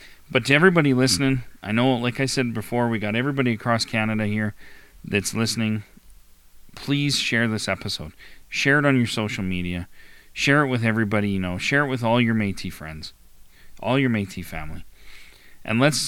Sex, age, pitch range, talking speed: male, 40-59, 95-120 Hz, 175 wpm